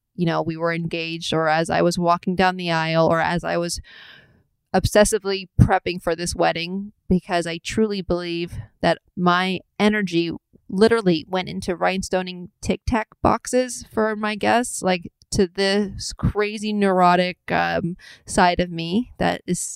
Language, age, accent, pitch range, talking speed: English, 30-49, American, 175-200 Hz, 150 wpm